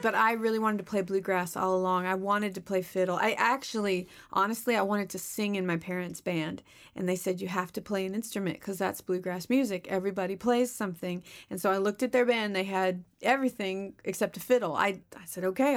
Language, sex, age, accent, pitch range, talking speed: English, female, 30-49, American, 185-215 Hz, 220 wpm